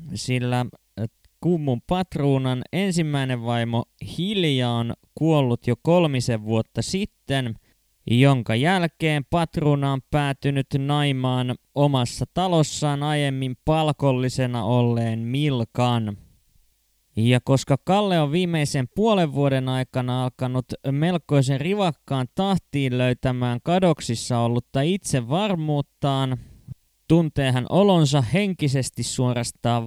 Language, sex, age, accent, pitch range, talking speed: Finnish, male, 20-39, native, 125-155 Hz, 90 wpm